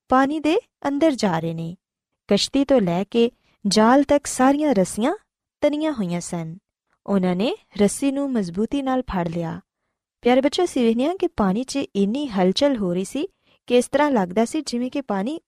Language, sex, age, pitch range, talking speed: Punjabi, female, 20-39, 190-280 Hz, 160 wpm